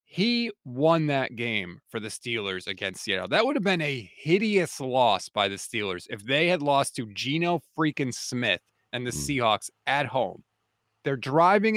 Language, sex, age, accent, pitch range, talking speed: English, male, 30-49, American, 135-180 Hz, 175 wpm